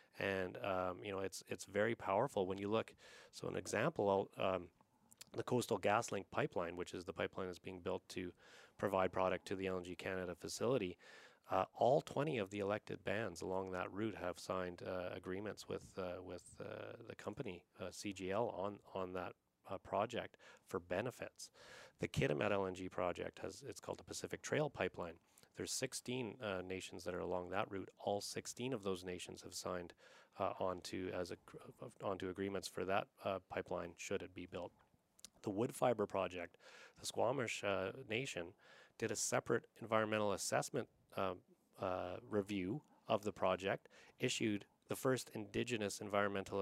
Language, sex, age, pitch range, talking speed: English, male, 30-49, 90-105 Hz, 160 wpm